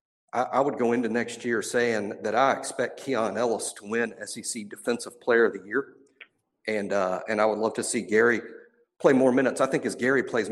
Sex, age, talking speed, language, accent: male, 50-69, 210 wpm, English, American